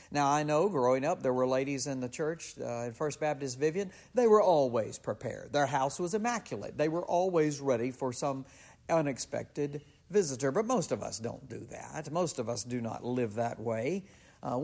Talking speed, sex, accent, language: 195 wpm, male, American, English